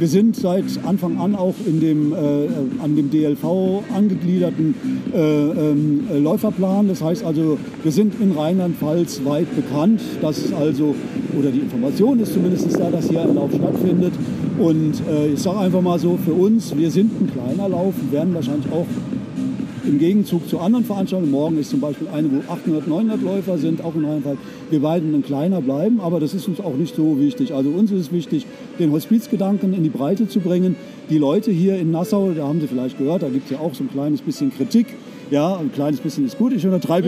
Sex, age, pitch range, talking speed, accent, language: male, 50-69, 155-195 Hz, 205 wpm, German, German